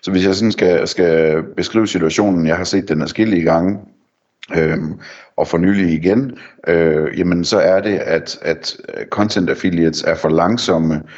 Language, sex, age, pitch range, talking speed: Danish, male, 60-79, 80-95 Hz, 170 wpm